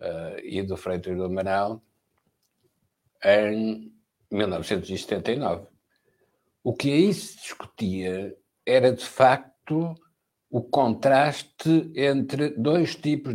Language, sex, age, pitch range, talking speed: Portuguese, male, 60-79, 105-165 Hz, 90 wpm